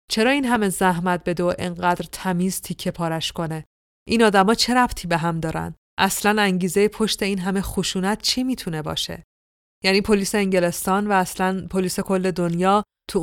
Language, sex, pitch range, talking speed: Persian, female, 175-200 Hz, 165 wpm